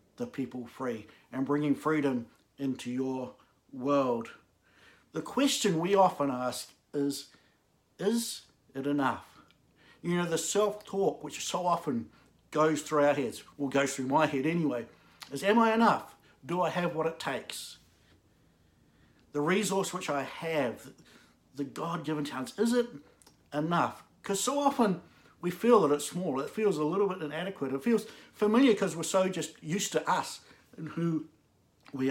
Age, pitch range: 60-79, 135-195 Hz